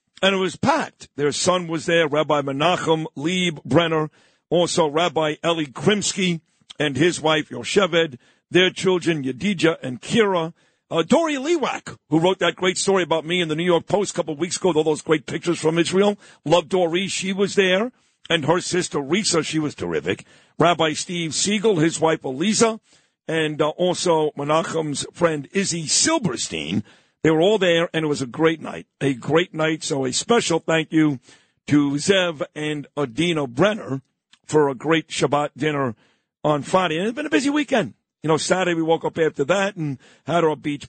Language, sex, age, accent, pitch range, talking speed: English, male, 50-69, American, 150-180 Hz, 180 wpm